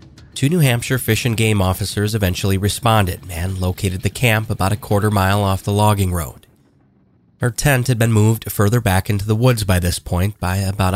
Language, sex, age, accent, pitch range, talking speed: English, male, 30-49, American, 95-115 Hz, 195 wpm